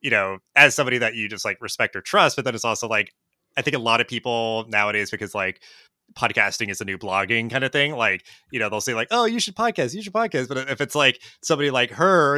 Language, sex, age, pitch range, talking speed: English, male, 20-39, 100-135 Hz, 260 wpm